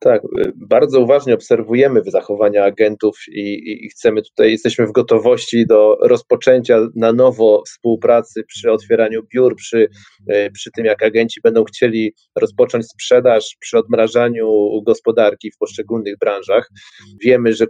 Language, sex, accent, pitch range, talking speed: Polish, male, native, 110-165 Hz, 130 wpm